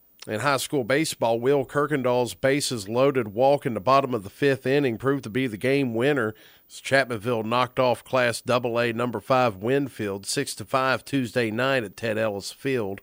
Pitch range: 125-150 Hz